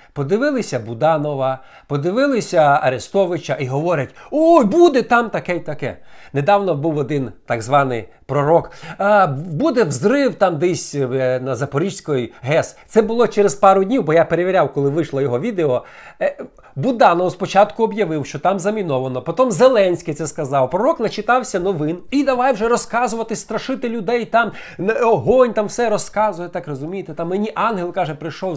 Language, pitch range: Ukrainian, 155-220 Hz